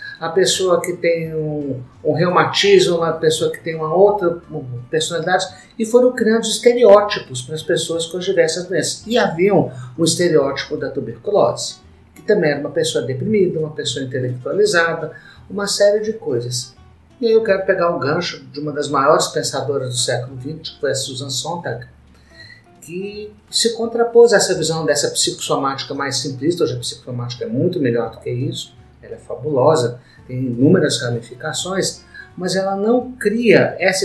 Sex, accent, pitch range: male, Brazilian, 145-195 Hz